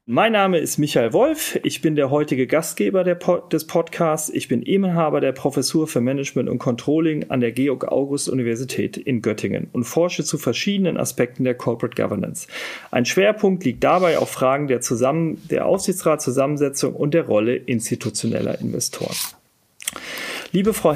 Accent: German